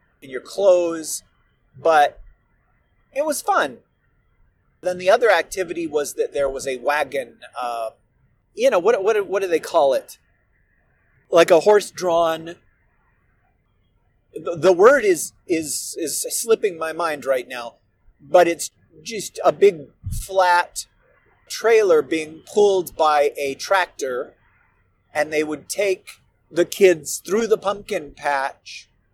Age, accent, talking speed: 30-49, American, 130 wpm